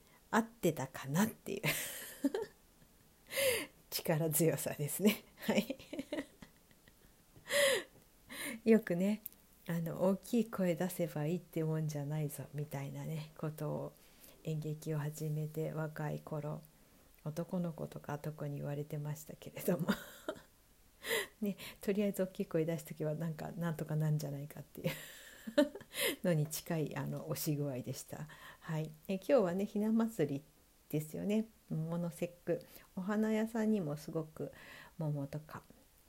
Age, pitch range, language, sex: 60-79, 150-200 Hz, Japanese, female